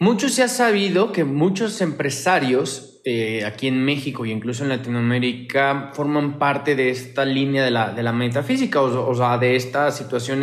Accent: Mexican